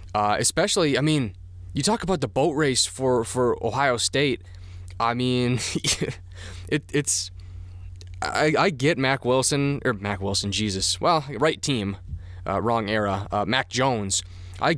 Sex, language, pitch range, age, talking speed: male, English, 100-125 Hz, 20-39, 150 wpm